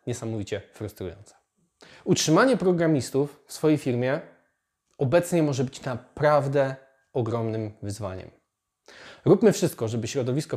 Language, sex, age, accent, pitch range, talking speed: Polish, male, 20-39, native, 115-170 Hz, 95 wpm